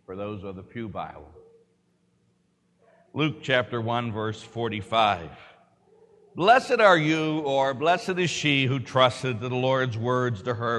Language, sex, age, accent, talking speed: English, male, 60-79, American, 145 wpm